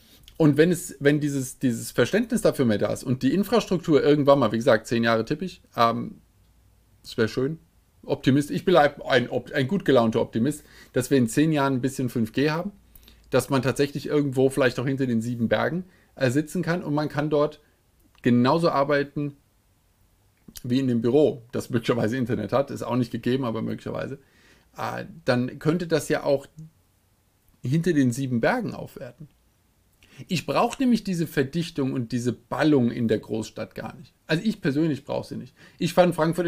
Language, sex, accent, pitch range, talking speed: German, male, German, 120-150 Hz, 180 wpm